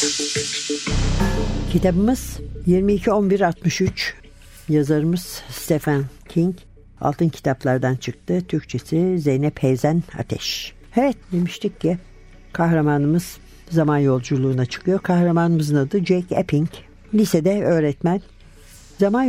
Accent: native